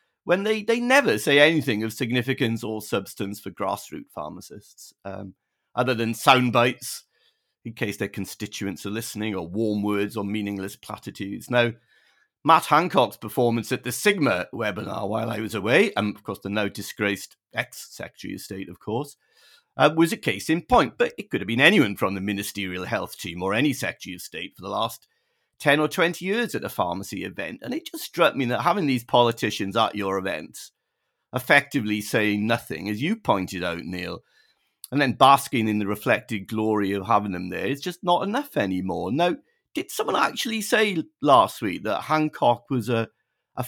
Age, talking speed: 40-59, 185 wpm